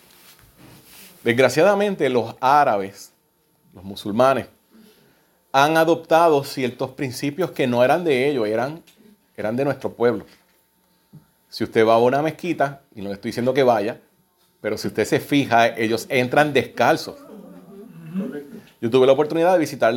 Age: 30-49